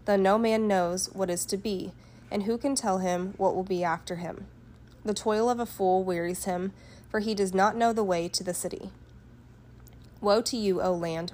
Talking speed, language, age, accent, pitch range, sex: 205 wpm, English, 30-49, American, 175-205 Hz, female